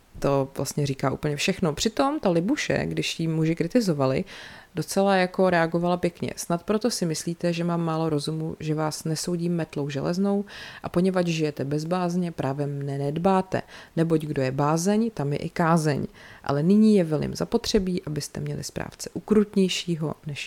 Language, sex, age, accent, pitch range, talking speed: Czech, female, 30-49, native, 150-180 Hz, 160 wpm